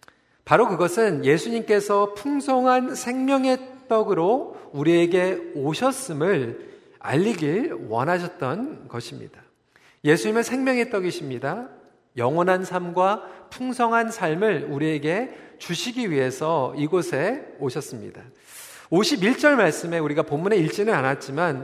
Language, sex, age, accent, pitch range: Korean, male, 40-59, native, 160-240 Hz